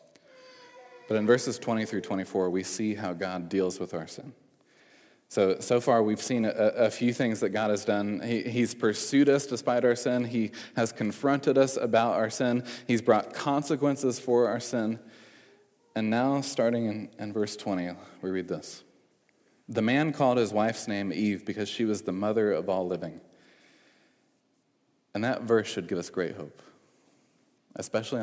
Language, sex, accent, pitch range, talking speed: English, male, American, 95-120 Hz, 170 wpm